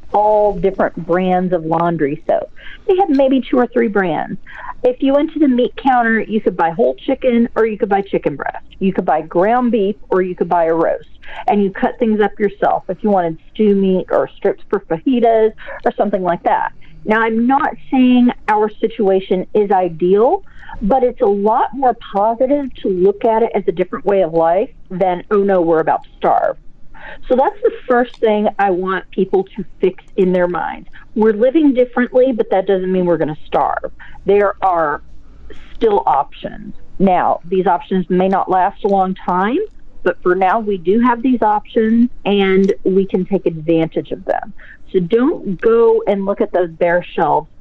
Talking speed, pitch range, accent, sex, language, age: 195 wpm, 185-235 Hz, American, female, English, 40-59